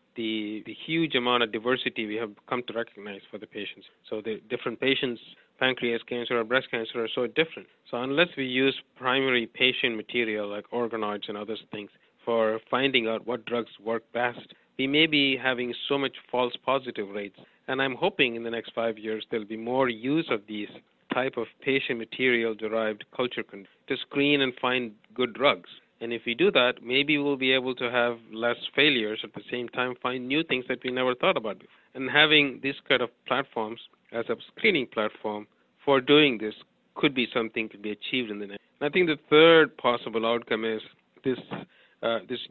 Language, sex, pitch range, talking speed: English, male, 110-130 Hz, 195 wpm